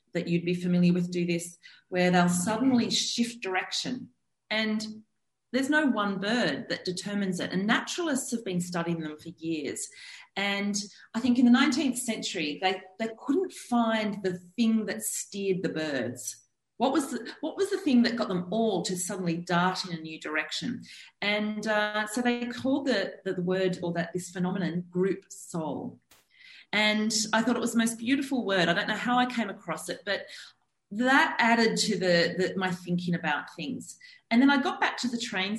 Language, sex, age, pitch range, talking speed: English, female, 40-59, 175-240 Hz, 185 wpm